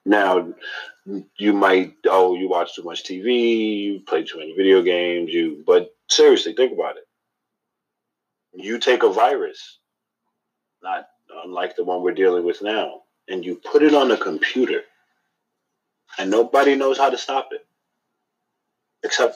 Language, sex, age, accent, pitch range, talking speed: English, male, 30-49, American, 350-435 Hz, 150 wpm